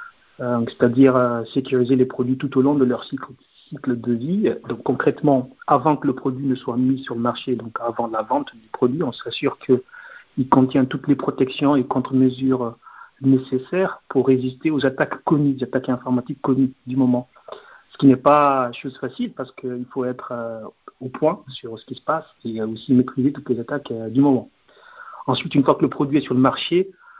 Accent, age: French, 50-69